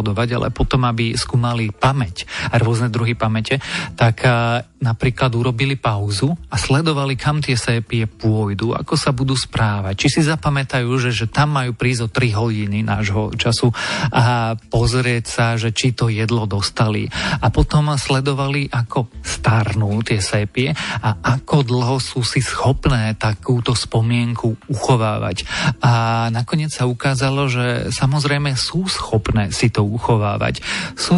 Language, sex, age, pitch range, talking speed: Slovak, male, 40-59, 115-135 Hz, 140 wpm